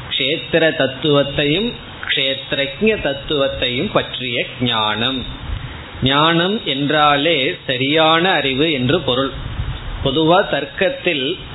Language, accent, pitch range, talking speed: Tamil, native, 130-165 Hz, 60 wpm